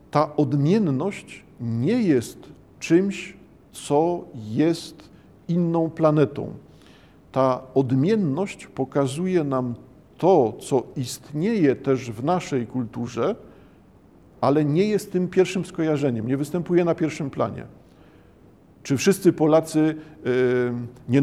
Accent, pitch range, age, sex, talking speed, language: native, 130-155 Hz, 50-69, male, 100 wpm, Polish